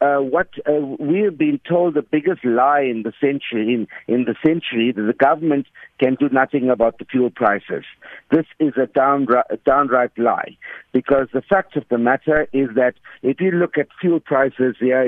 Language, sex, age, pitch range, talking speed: English, male, 50-69, 130-165 Hz, 185 wpm